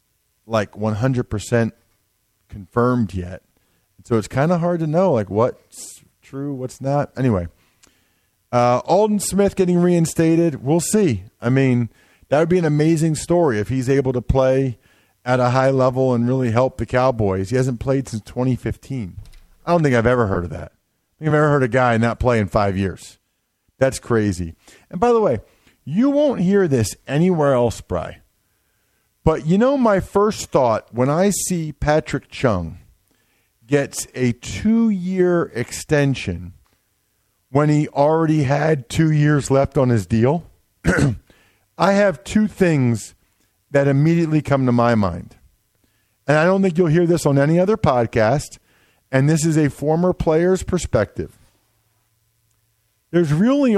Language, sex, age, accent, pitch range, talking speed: English, male, 40-59, American, 105-155 Hz, 155 wpm